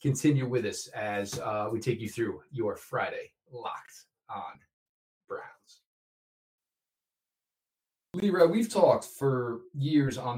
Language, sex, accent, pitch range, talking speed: English, male, American, 110-145 Hz, 115 wpm